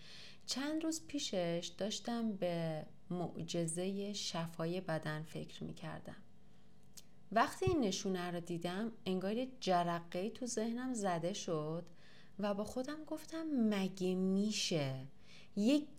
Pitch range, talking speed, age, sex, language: 160-205 Hz, 105 wpm, 30-49, female, Persian